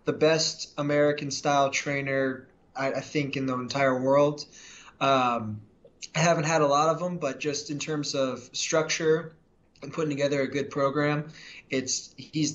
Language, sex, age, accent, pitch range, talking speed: English, male, 20-39, American, 135-155 Hz, 165 wpm